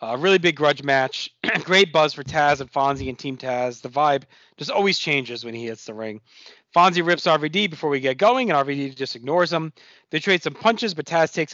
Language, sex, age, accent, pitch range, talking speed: English, male, 40-59, American, 150-190 Hz, 225 wpm